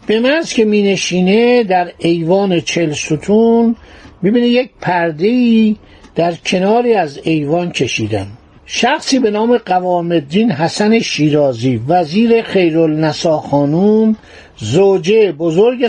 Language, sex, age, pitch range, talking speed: Persian, male, 50-69, 165-220 Hz, 105 wpm